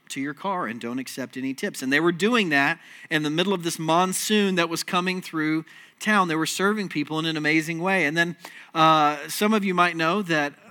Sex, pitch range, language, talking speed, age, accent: male, 145-185 Hz, English, 230 wpm, 40-59, American